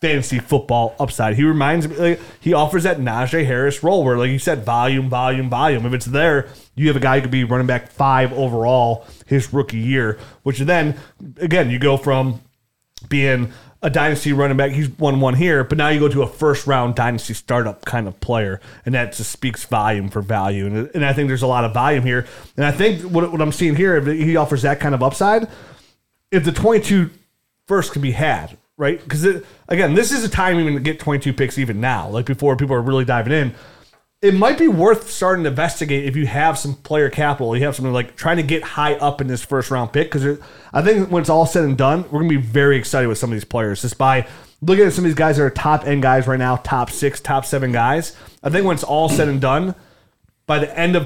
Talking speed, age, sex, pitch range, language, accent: 235 wpm, 30-49, male, 125-155 Hz, English, American